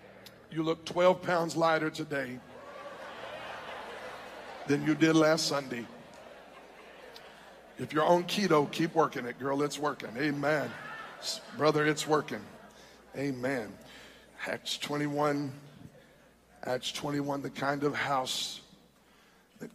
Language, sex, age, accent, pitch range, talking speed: English, male, 50-69, American, 150-170 Hz, 105 wpm